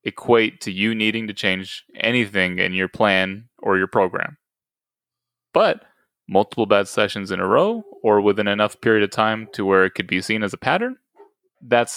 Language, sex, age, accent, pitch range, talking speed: English, male, 20-39, American, 100-125 Hz, 180 wpm